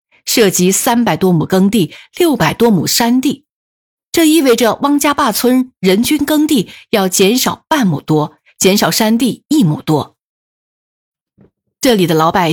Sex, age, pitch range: female, 50-69, 175-255 Hz